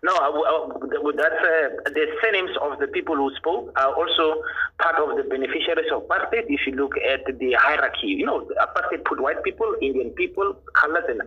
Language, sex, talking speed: English, male, 190 wpm